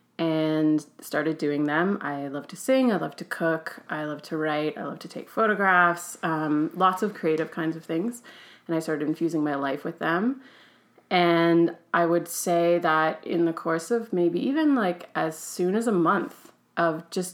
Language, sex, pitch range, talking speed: English, female, 160-185 Hz, 190 wpm